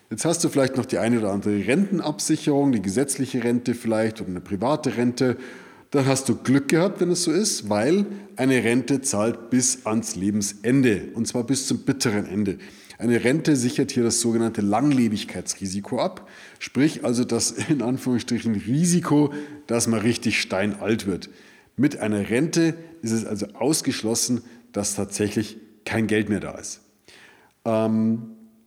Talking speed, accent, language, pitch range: 155 wpm, German, German, 110-135 Hz